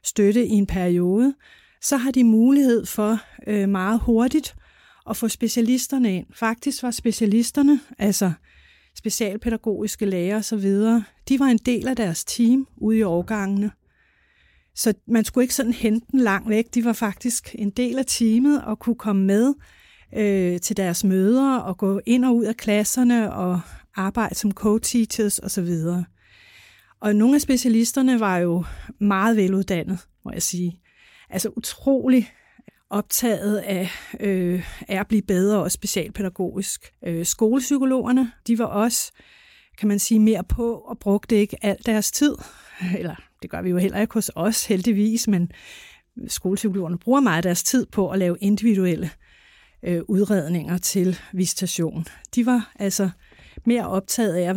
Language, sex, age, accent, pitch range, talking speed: Danish, female, 30-49, native, 195-235 Hz, 150 wpm